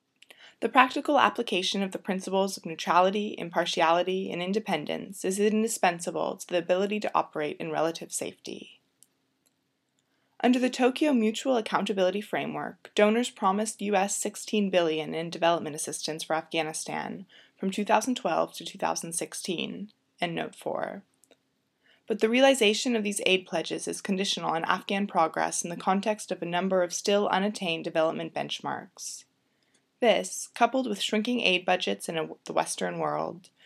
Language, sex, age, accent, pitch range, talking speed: English, female, 20-39, American, 170-220 Hz, 135 wpm